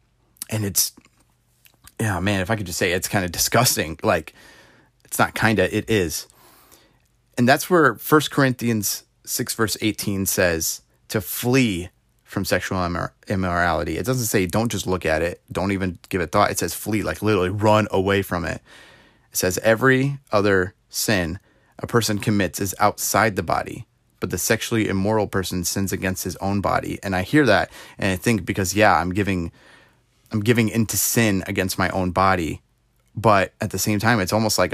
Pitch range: 95-115 Hz